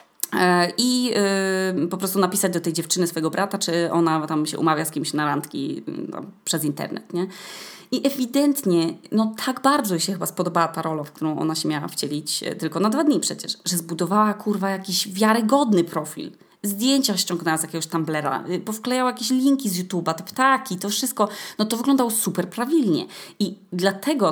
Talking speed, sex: 175 wpm, female